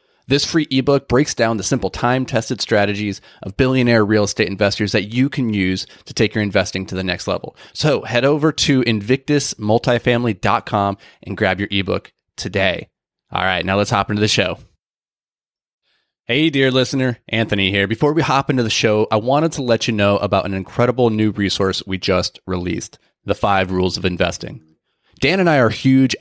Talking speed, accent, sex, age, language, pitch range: 180 wpm, American, male, 30-49, English, 100-125 Hz